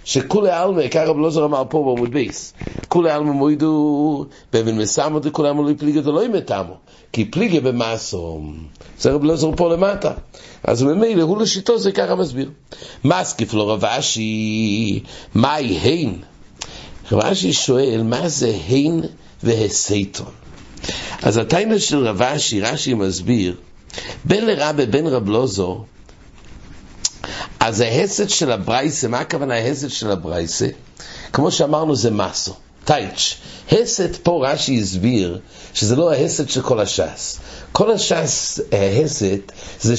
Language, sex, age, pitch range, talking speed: English, male, 60-79, 110-155 Hz, 110 wpm